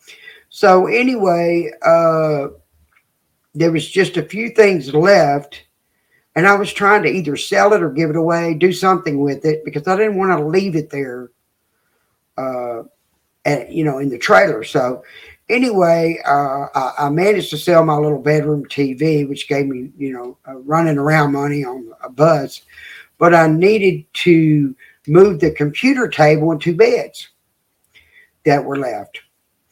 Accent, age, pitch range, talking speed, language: American, 50-69, 145-190 Hz, 160 wpm, English